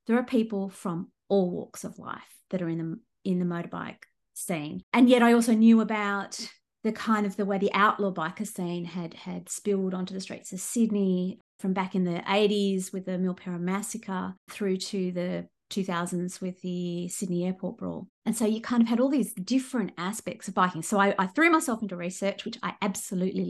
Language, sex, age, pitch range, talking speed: English, female, 30-49, 180-215 Hz, 200 wpm